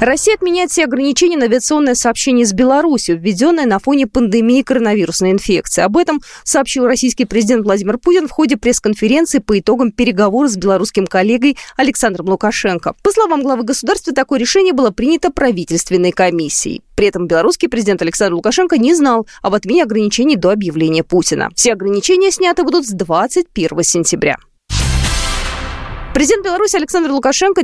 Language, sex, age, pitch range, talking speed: Russian, female, 20-39, 200-305 Hz, 150 wpm